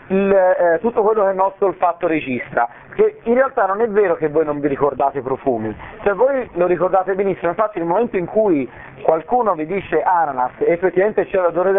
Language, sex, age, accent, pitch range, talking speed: Italian, male, 40-59, native, 150-200 Hz, 220 wpm